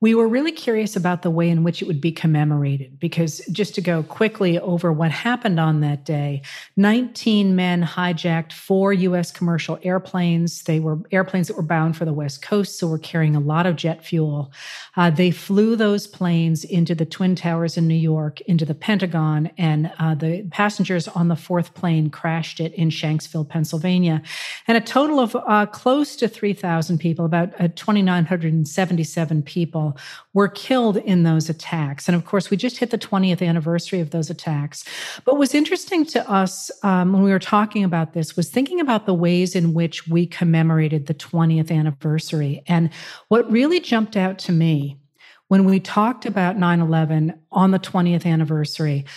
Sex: female